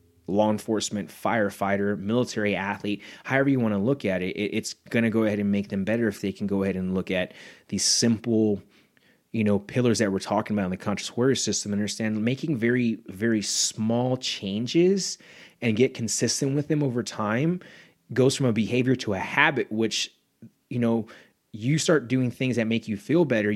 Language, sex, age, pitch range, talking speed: English, male, 30-49, 100-125 Hz, 190 wpm